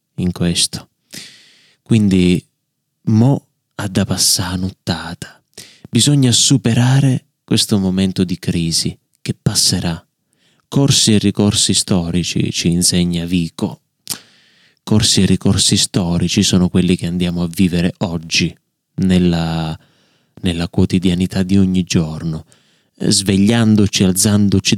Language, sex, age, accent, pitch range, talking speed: Italian, male, 30-49, native, 90-110 Hz, 100 wpm